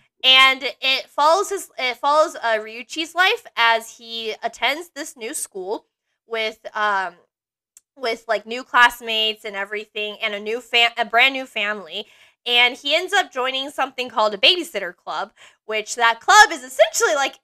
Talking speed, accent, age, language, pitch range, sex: 155 wpm, American, 20-39, English, 215-290 Hz, female